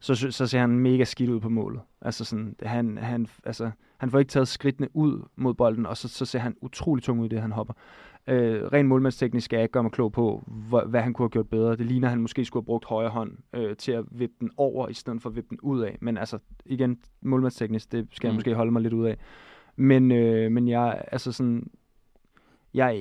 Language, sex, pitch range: Danish, male, 110-130 Hz